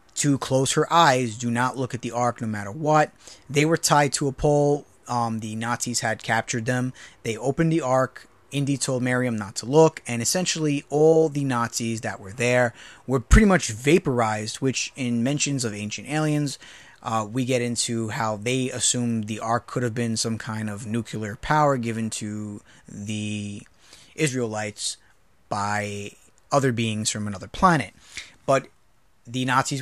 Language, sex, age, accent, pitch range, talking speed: English, male, 20-39, American, 110-135 Hz, 165 wpm